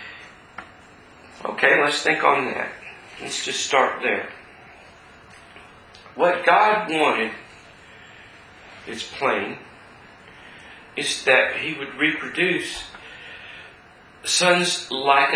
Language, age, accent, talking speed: English, 50-69, American, 80 wpm